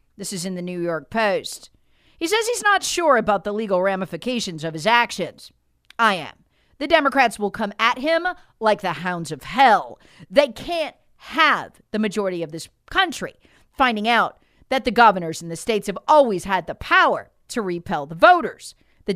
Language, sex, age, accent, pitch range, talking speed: English, female, 40-59, American, 170-265 Hz, 180 wpm